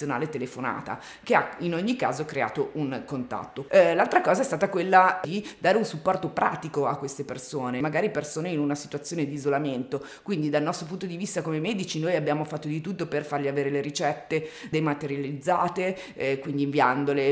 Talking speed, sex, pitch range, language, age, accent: 180 wpm, female, 145-175 Hz, Italian, 30-49, native